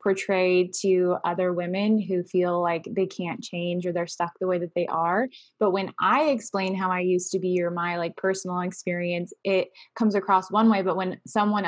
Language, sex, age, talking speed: English, female, 20-39, 205 wpm